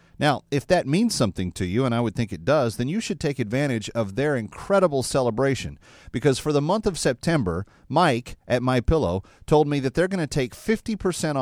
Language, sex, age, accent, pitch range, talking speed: English, male, 40-59, American, 95-130 Hz, 205 wpm